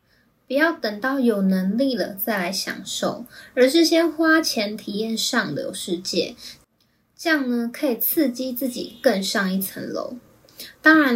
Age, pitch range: 20-39, 205-265 Hz